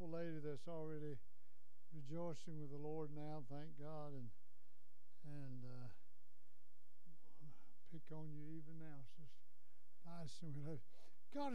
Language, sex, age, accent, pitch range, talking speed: English, male, 60-79, American, 130-165 Hz, 105 wpm